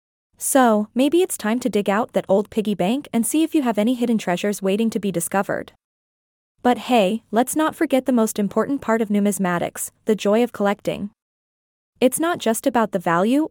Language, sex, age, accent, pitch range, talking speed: English, female, 20-39, American, 200-255 Hz, 195 wpm